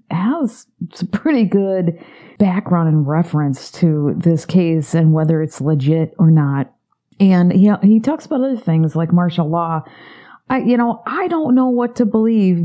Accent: American